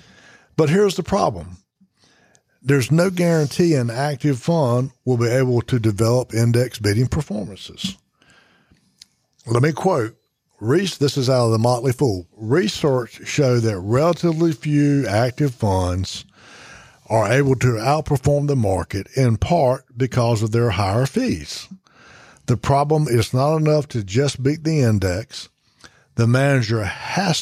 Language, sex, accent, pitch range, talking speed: English, male, American, 115-145 Hz, 135 wpm